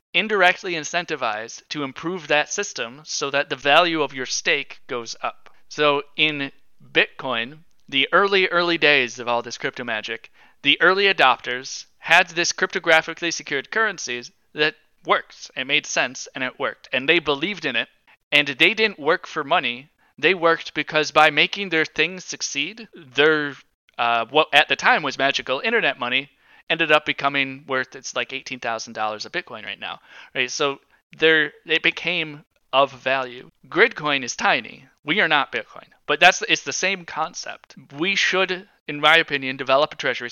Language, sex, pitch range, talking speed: English, male, 130-160 Hz, 170 wpm